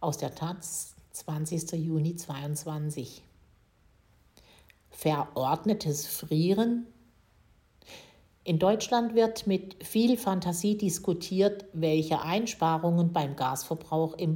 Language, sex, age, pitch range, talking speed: German, female, 50-69, 150-185 Hz, 85 wpm